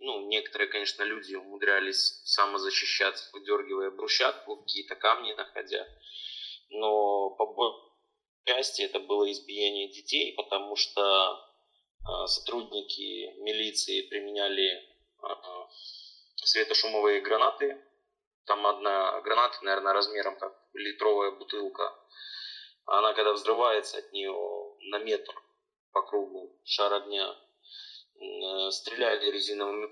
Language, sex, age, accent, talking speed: Ukrainian, male, 20-39, native, 100 wpm